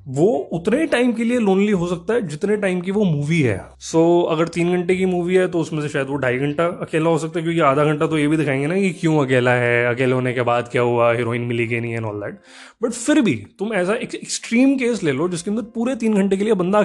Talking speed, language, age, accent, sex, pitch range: 275 wpm, Hindi, 20-39, native, male, 145-210 Hz